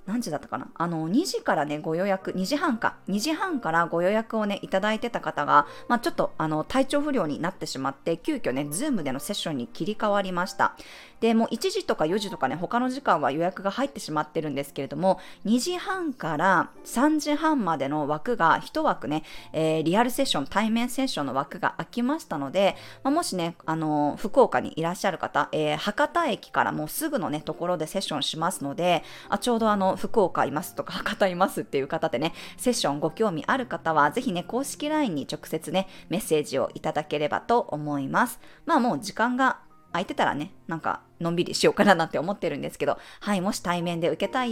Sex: female